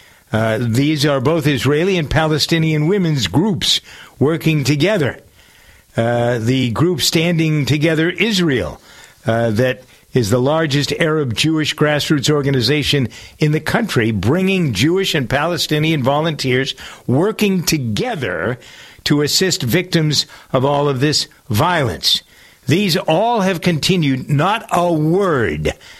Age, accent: 60-79, American